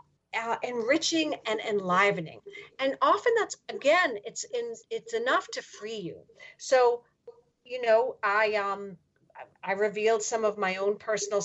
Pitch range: 195-315 Hz